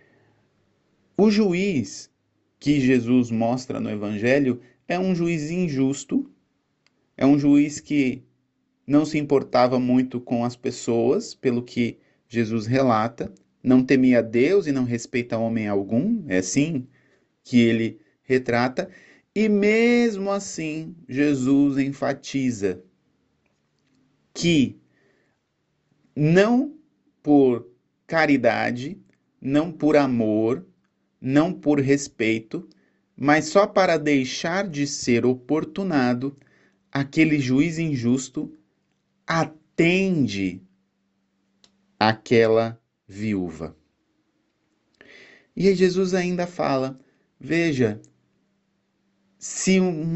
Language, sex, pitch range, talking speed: Portuguese, male, 120-160 Hz, 90 wpm